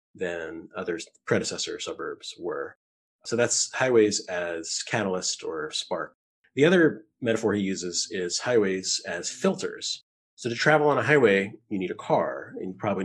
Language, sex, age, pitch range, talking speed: English, male, 30-49, 95-120 Hz, 155 wpm